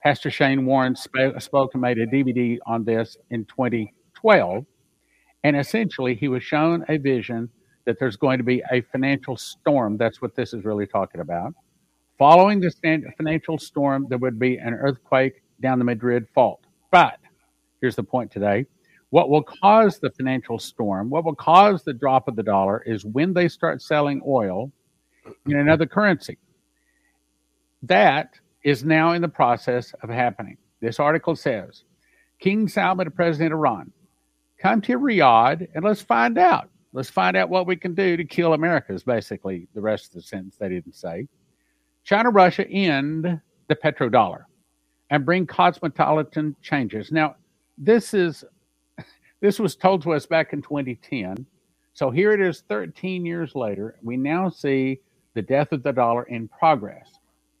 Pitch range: 120-165 Hz